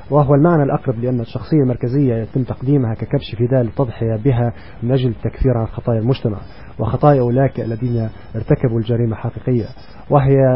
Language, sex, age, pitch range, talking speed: Arabic, male, 30-49, 115-135 Hz, 140 wpm